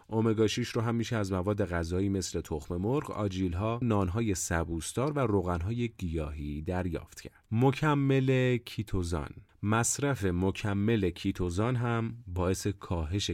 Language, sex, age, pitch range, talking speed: Persian, male, 30-49, 85-110 Hz, 125 wpm